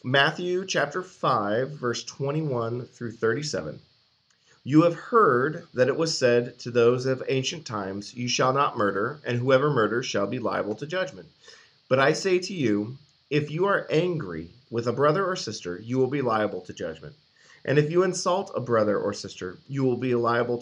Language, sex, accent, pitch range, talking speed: English, male, American, 115-145 Hz, 185 wpm